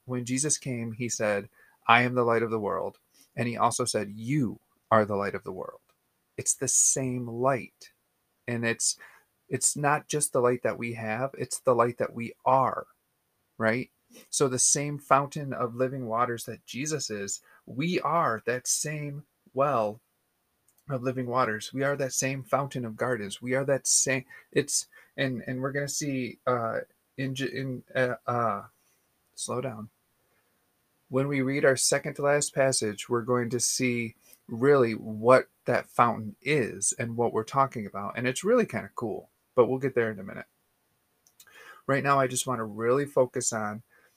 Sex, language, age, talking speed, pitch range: male, English, 30-49, 180 wpm, 115-135 Hz